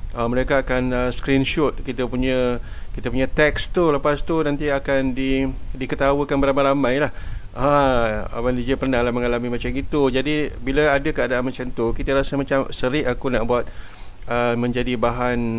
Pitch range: 115-130 Hz